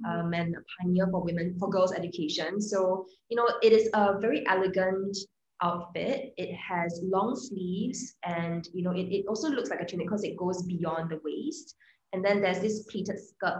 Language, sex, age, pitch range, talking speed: English, female, 20-39, 175-215 Hz, 195 wpm